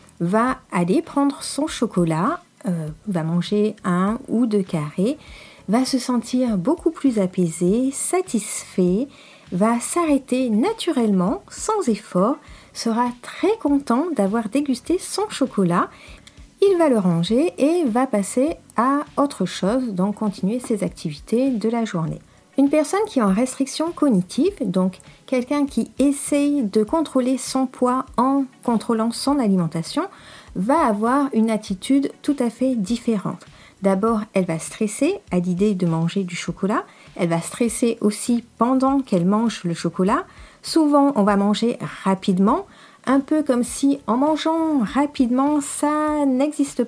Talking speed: 140 wpm